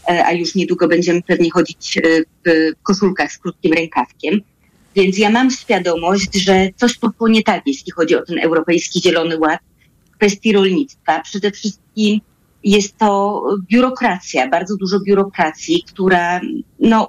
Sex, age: female, 30-49